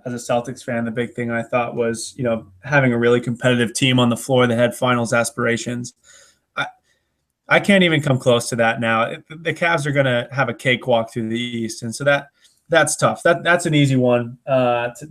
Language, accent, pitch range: English, American, 120-150 Hz